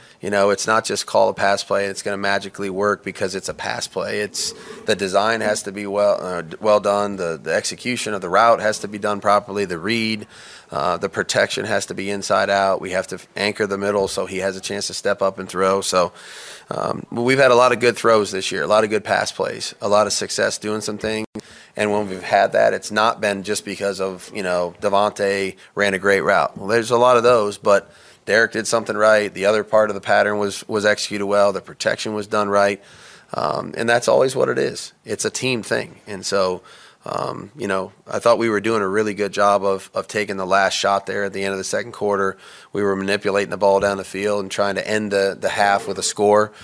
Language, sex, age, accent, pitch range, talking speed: English, male, 30-49, American, 95-105 Hz, 245 wpm